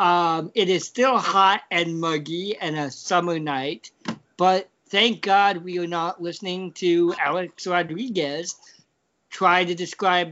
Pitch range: 150-190 Hz